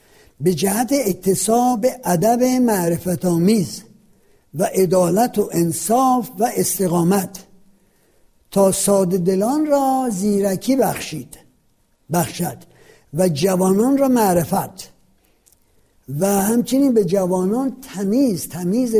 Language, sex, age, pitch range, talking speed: Persian, male, 60-79, 175-230 Hz, 85 wpm